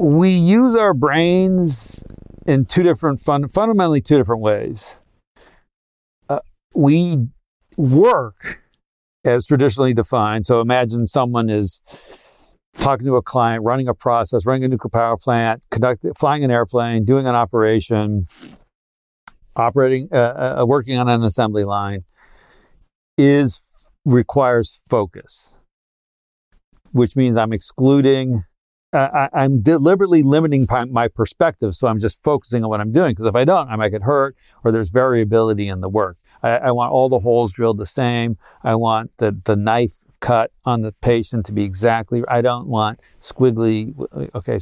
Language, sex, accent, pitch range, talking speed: English, male, American, 110-135 Hz, 145 wpm